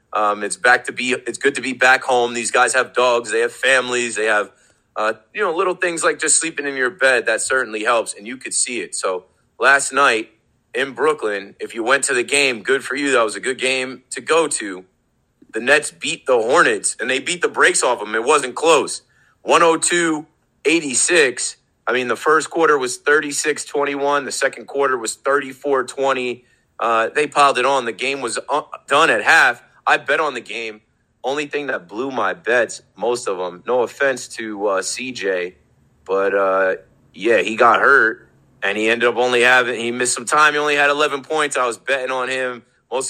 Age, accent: 30-49, American